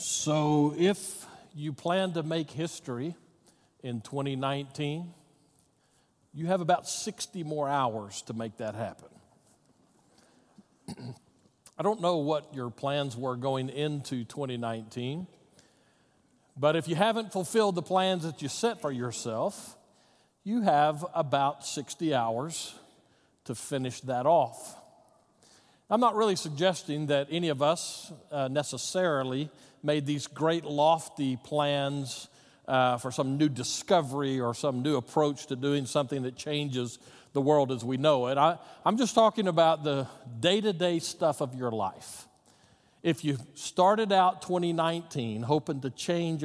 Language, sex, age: English, male, 50-69